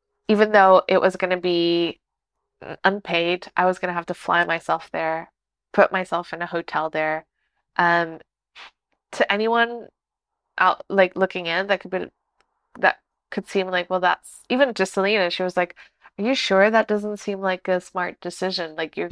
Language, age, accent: English, 20-39, American